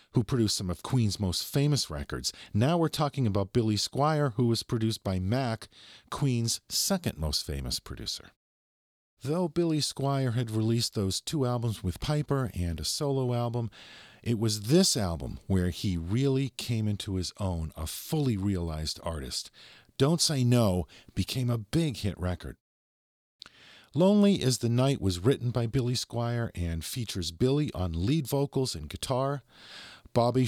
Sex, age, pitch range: male, 50-69, 90-135 Hz